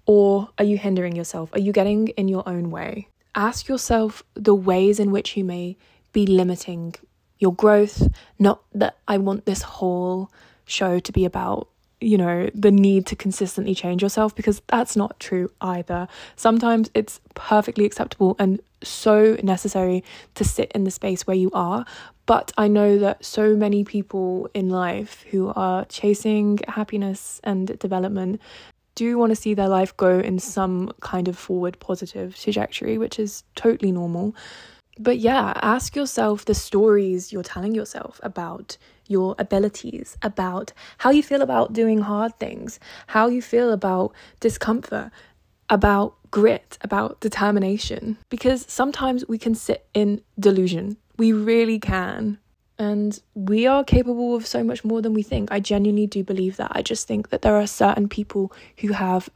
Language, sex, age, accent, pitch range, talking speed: English, female, 20-39, British, 190-215 Hz, 160 wpm